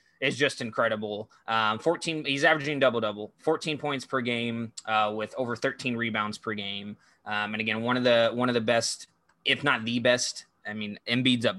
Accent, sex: American, male